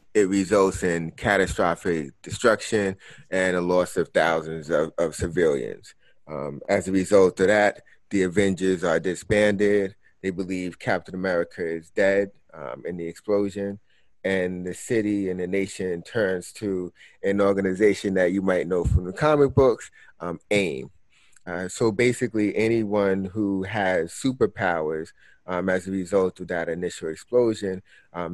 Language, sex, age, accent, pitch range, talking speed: English, male, 30-49, American, 90-100 Hz, 145 wpm